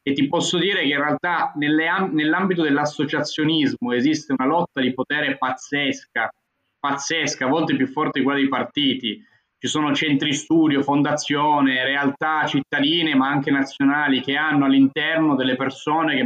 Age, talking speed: 20-39, 150 wpm